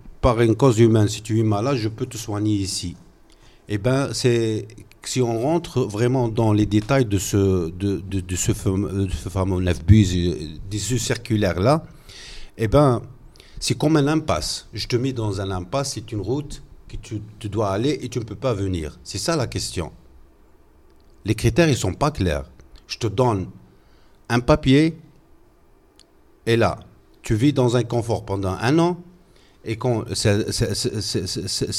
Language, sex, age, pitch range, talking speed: French, male, 50-69, 100-130 Hz, 175 wpm